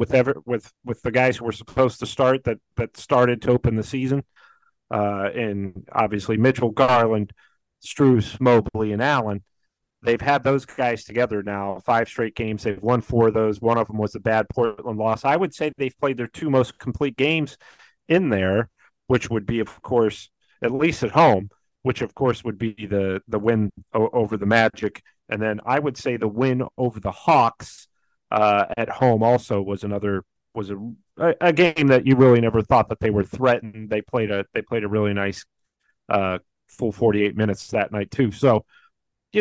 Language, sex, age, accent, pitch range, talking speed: English, male, 40-59, American, 110-135 Hz, 195 wpm